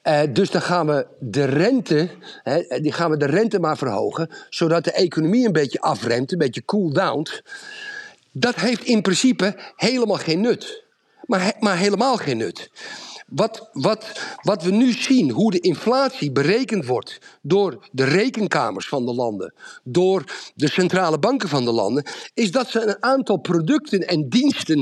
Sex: male